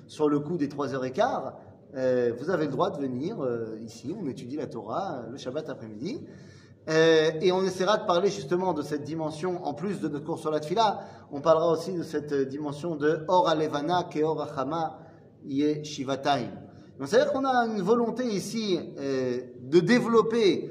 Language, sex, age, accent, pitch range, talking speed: French, male, 30-49, French, 150-215 Hz, 180 wpm